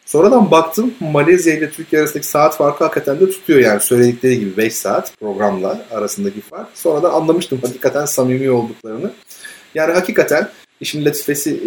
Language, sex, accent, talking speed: Turkish, male, native, 145 wpm